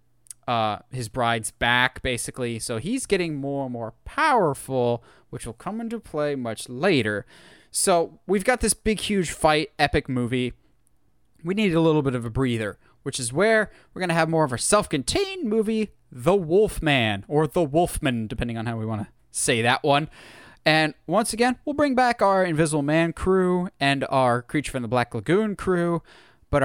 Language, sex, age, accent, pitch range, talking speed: English, male, 20-39, American, 125-210 Hz, 180 wpm